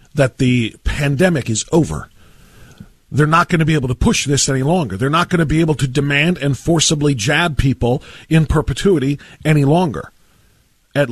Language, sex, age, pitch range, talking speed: English, male, 40-59, 130-190 Hz, 180 wpm